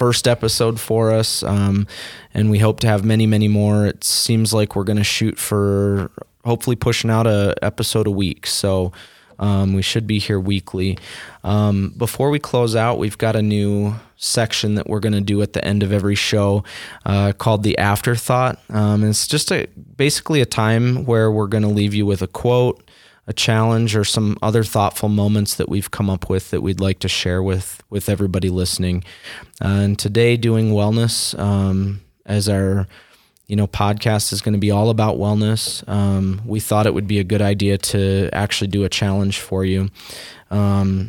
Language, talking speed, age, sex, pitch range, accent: English, 195 wpm, 20-39, male, 100-110 Hz, American